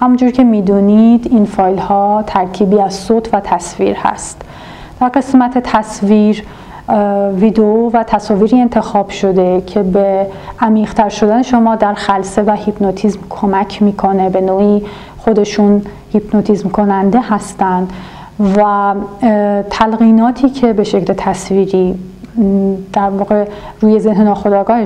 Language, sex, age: Persian, female, 40-59